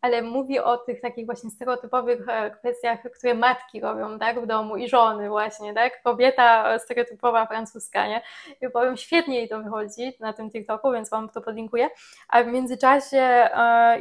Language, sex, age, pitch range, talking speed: Polish, female, 20-39, 225-260 Hz, 170 wpm